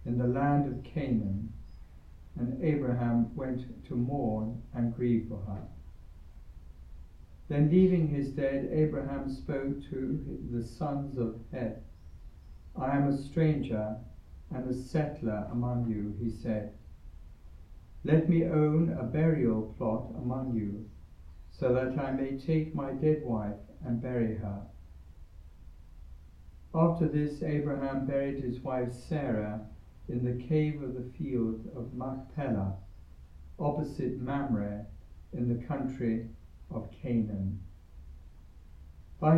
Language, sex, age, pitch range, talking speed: English, male, 60-79, 95-140 Hz, 120 wpm